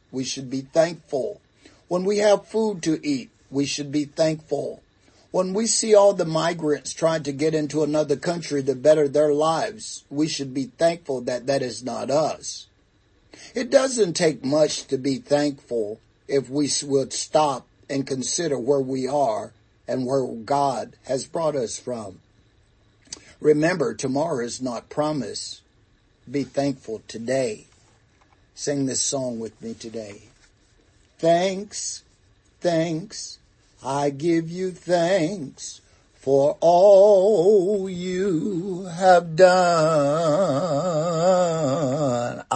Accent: American